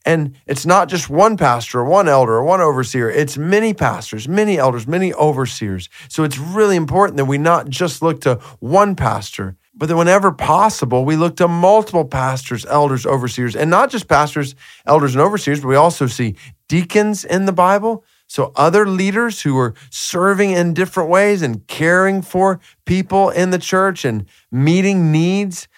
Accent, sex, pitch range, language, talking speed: American, male, 130-180 Hz, English, 175 wpm